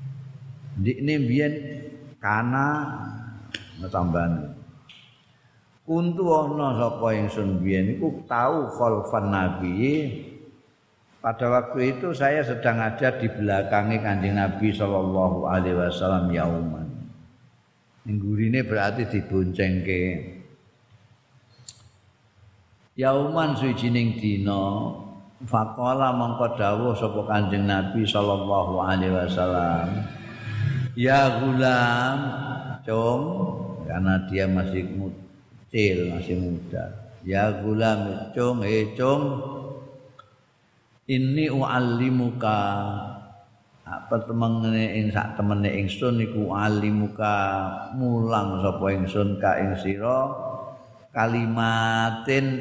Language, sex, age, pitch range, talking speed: Indonesian, male, 50-69, 95-125 Hz, 85 wpm